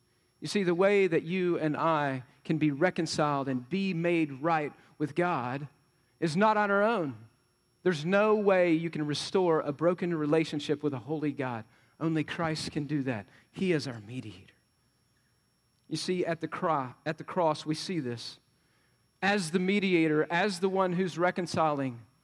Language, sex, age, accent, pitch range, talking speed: English, male, 40-59, American, 130-180 Hz, 170 wpm